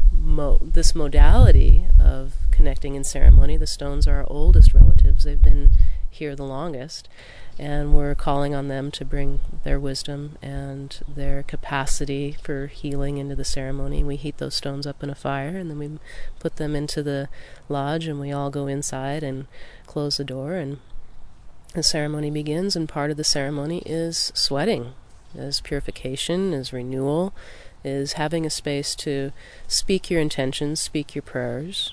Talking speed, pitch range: 160 wpm, 125-150 Hz